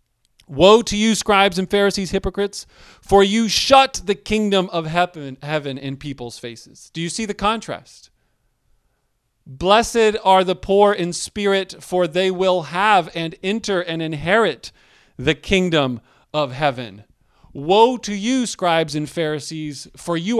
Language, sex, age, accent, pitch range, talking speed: English, male, 40-59, American, 150-195 Hz, 140 wpm